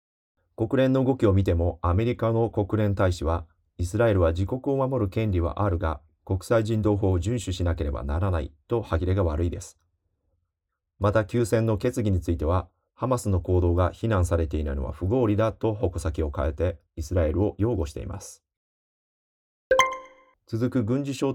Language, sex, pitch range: Japanese, male, 85-110 Hz